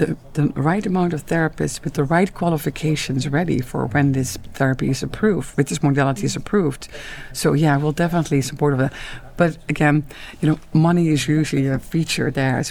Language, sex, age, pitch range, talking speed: Danish, female, 50-69, 135-155 Hz, 185 wpm